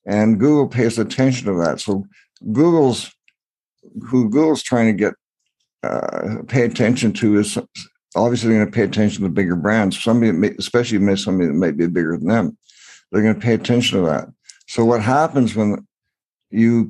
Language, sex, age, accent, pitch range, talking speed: English, male, 60-79, American, 95-115 Hz, 170 wpm